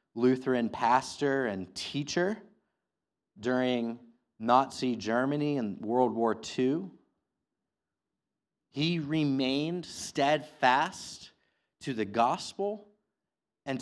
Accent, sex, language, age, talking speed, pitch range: American, male, English, 30-49, 80 wpm, 130-175 Hz